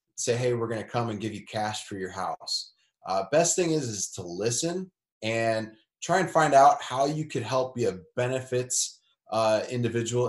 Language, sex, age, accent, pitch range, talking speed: English, male, 20-39, American, 115-145 Hz, 200 wpm